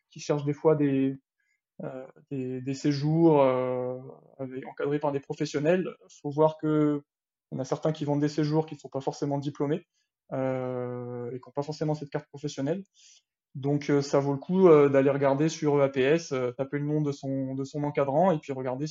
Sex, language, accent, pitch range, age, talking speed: male, French, French, 130-150 Hz, 20-39, 205 wpm